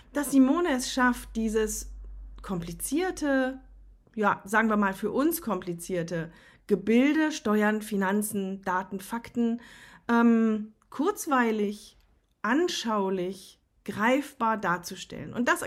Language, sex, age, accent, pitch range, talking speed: German, female, 40-59, German, 205-265 Hz, 95 wpm